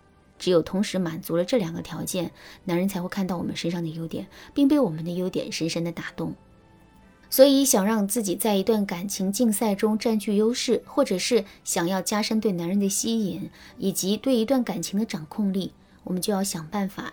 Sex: female